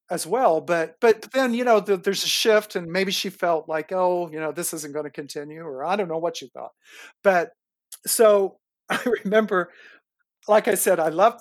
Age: 50-69